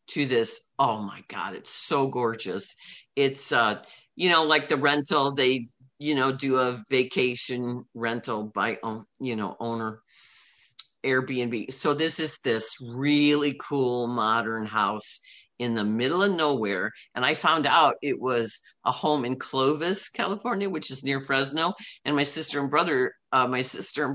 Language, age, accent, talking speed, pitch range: English, 50-69, American, 160 wpm, 120-155 Hz